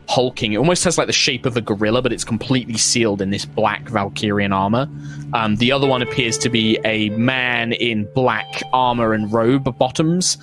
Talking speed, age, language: 195 wpm, 20-39, English